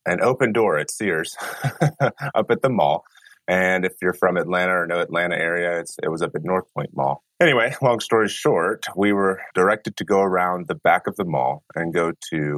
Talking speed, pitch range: 205 wpm, 80-100 Hz